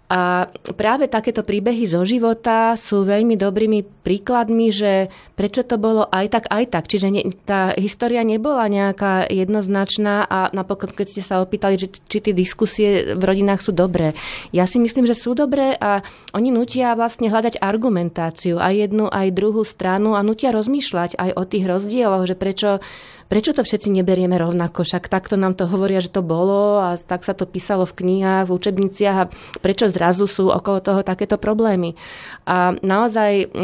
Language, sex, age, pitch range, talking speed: Slovak, female, 20-39, 180-210 Hz, 170 wpm